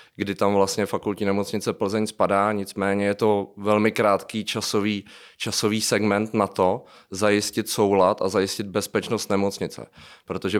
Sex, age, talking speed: male, 30-49, 135 wpm